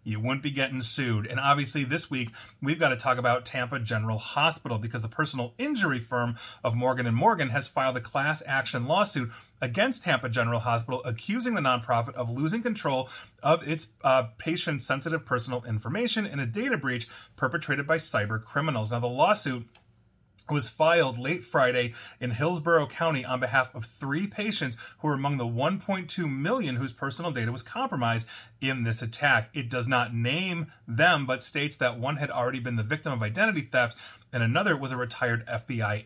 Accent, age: American, 30-49